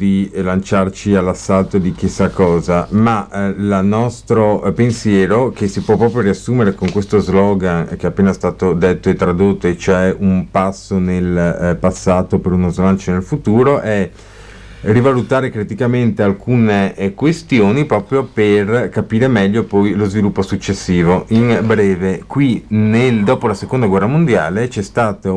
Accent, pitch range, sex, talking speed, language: native, 95-115 Hz, male, 150 wpm, Italian